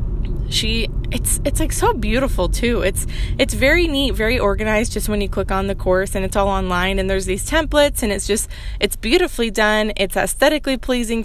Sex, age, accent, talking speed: female, 20-39, American, 195 wpm